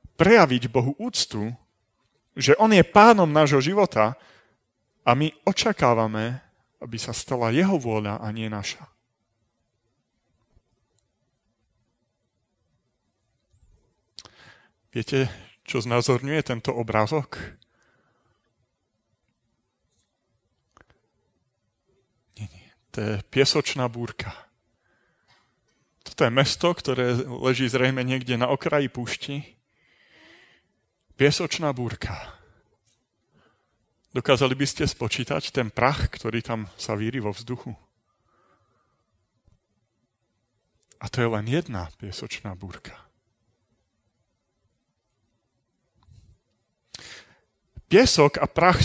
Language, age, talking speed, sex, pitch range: Slovak, 30-49, 80 wpm, male, 110-140 Hz